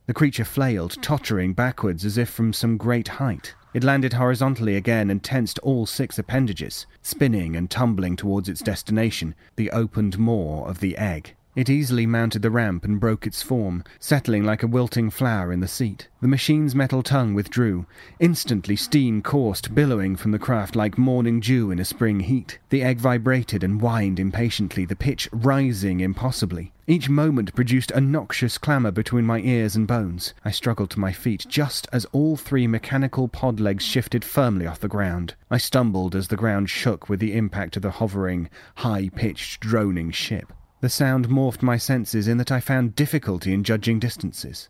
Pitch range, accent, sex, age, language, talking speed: 100-130 Hz, British, male, 30-49, English, 180 wpm